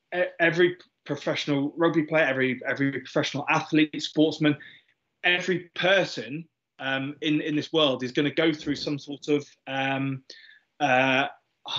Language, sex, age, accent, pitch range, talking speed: English, male, 20-39, British, 145-170 Hz, 130 wpm